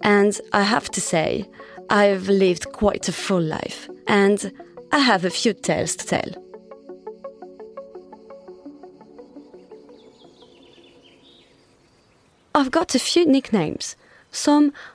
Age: 30-49